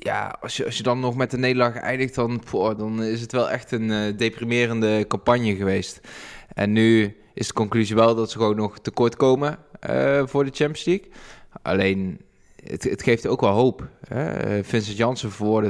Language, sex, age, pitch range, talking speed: Dutch, male, 20-39, 110-125 Hz, 195 wpm